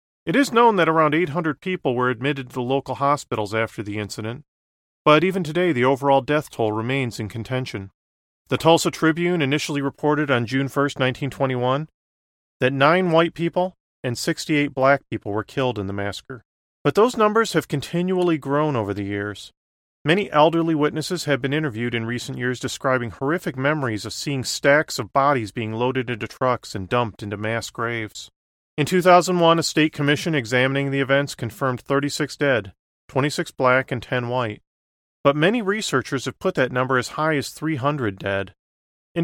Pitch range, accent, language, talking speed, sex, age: 115-155 Hz, American, English, 170 wpm, male, 40-59